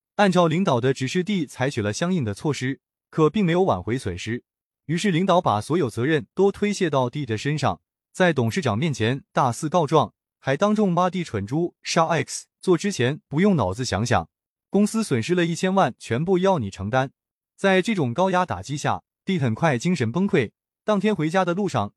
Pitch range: 120-185 Hz